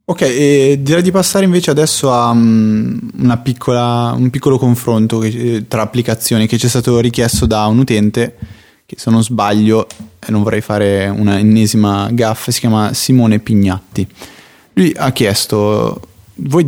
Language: Italian